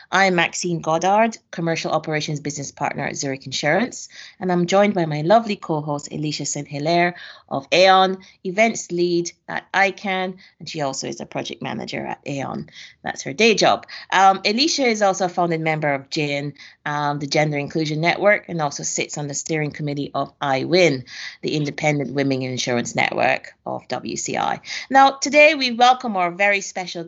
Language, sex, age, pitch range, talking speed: English, female, 30-49, 150-195 Hz, 165 wpm